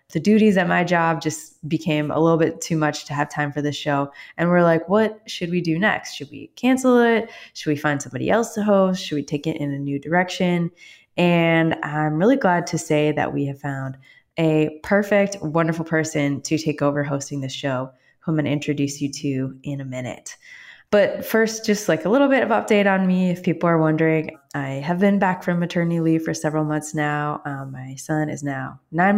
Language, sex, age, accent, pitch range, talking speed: English, female, 20-39, American, 150-180 Hz, 220 wpm